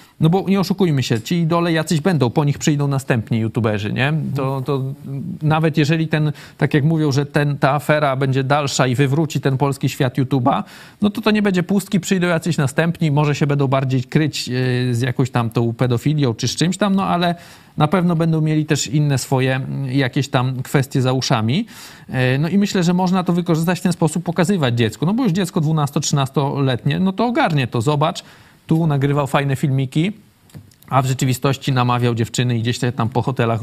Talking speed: 195 wpm